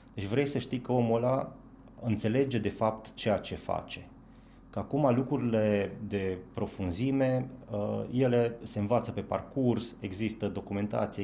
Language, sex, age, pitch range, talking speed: Romanian, male, 20-39, 90-115 Hz, 135 wpm